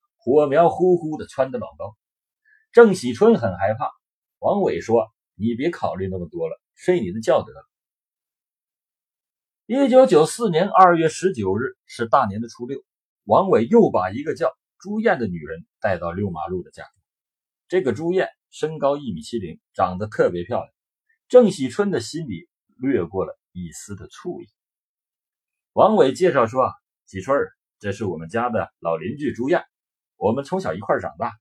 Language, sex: Chinese, male